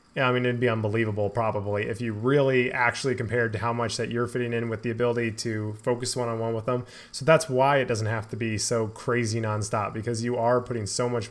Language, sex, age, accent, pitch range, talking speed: English, male, 20-39, American, 110-135 Hz, 230 wpm